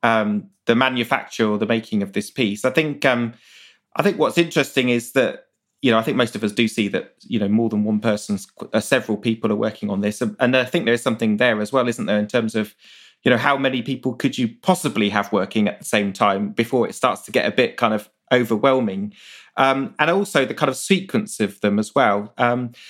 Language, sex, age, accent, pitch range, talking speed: English, male, 30-49, British, 110-135 Hz, 230 wpm